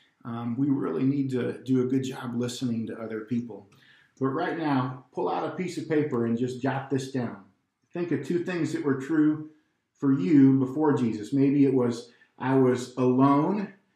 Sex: male